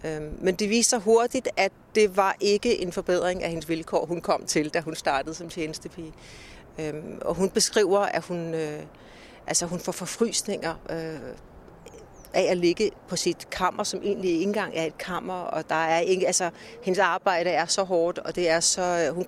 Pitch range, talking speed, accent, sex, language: 170-215 Hz, 155 wpm, native, female, Danish